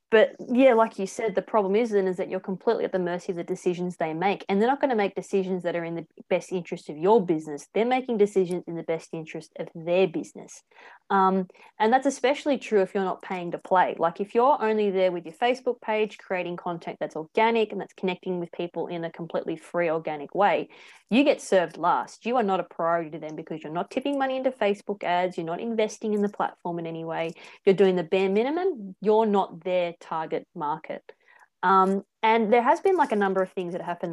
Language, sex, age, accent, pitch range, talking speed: English, female, 20-39, Australian, 170-205 Hz, 230 wpm